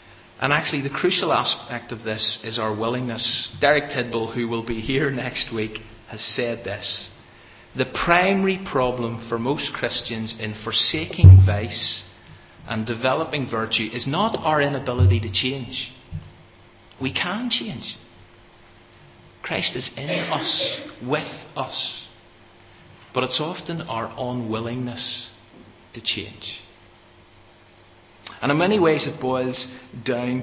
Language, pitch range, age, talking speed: English, 110-135 Hz, 40-59, 120 wpm